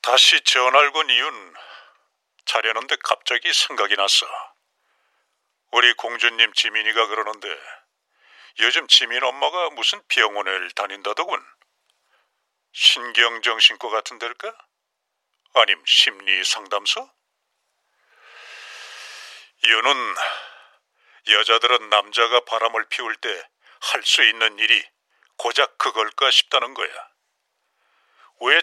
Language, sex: Korean, male